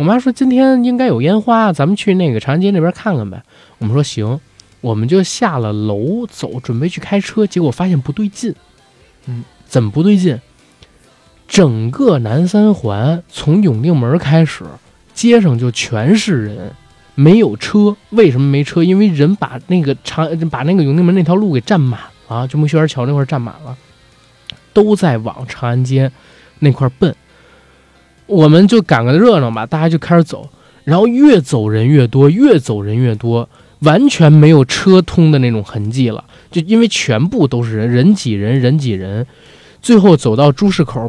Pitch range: 125-175 Hz